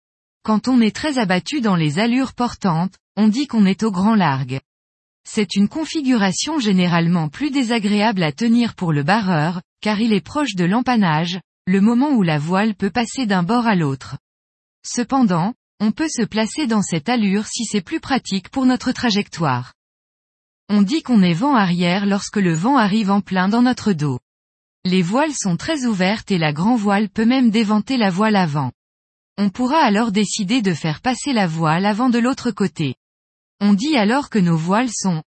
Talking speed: 185 wpm